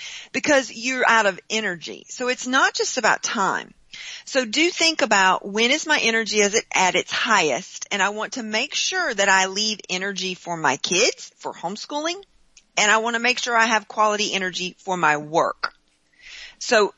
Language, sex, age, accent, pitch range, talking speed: English, female, 40-59, American, 175-225 Hz, 185 wpm